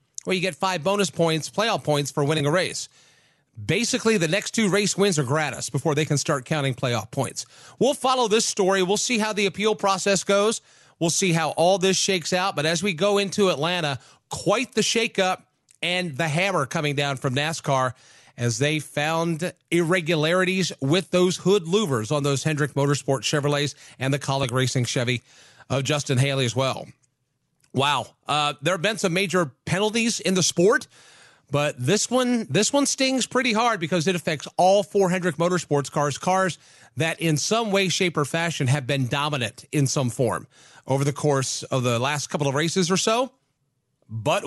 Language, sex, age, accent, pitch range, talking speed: English, male, 40-59, American, 145-195 Hz, 185 wpm